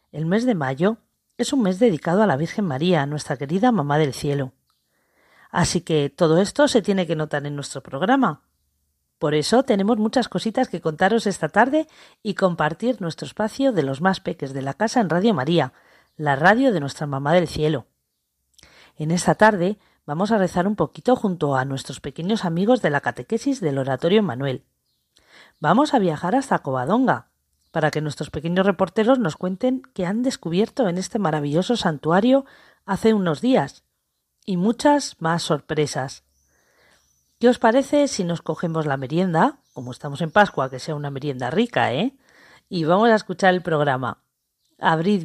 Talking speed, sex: 170 wpm, female